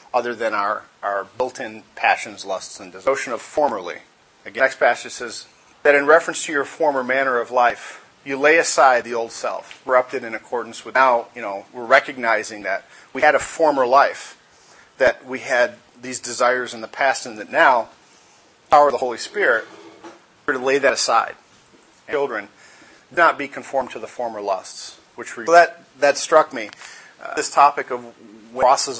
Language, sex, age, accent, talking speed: English, male, 40-59, American, 190 wpm